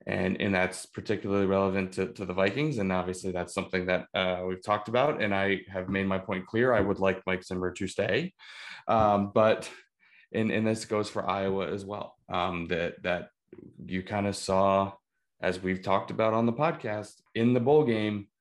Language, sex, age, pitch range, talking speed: English, male, 20-39, 90-100 Hz, 190 wpm